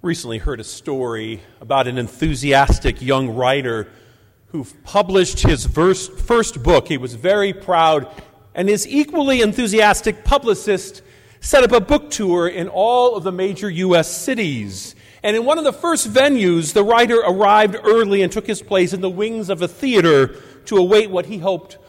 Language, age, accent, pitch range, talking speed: English, 50-69, American, 145-220 Hz, 170 wpm